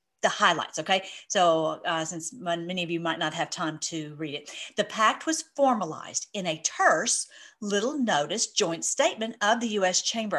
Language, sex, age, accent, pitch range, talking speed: English, female, 50-69, American, 190-265 Hz, 180 wpm